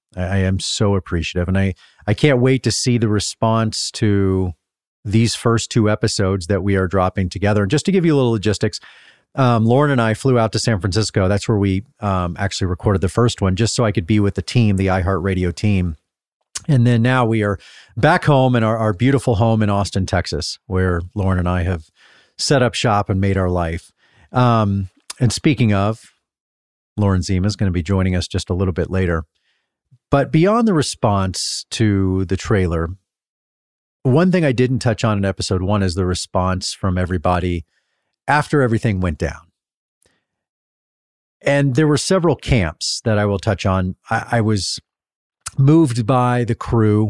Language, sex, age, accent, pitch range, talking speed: English, male, 40-59, American, 95-115 Hz, 185 wpm